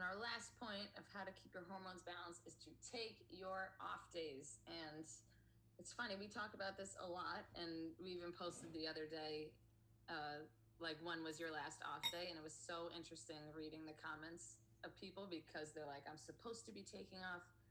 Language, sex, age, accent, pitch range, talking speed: English, female, 20-39, American, 150-175 Hz, 205 wpm